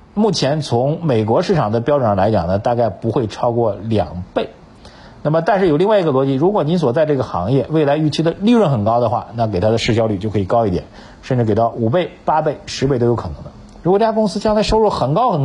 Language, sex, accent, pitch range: Chinese, male, native, 105-150 Hz